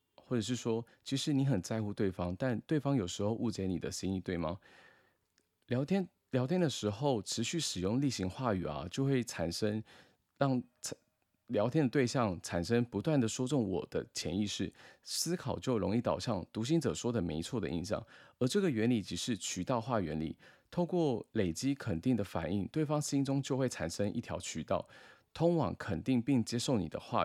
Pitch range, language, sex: 95-135 Hz, Chinese, male